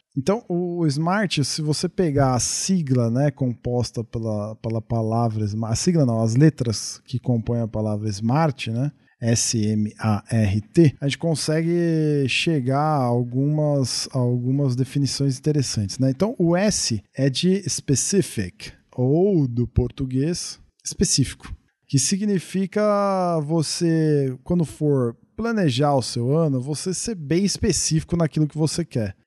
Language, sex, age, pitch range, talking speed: Portuguese, male, 40-59, 120-165 Hz, 130 wpm